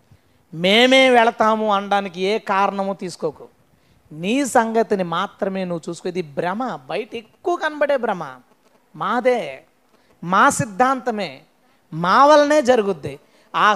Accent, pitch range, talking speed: native, 180-255 Hz, 100 wpm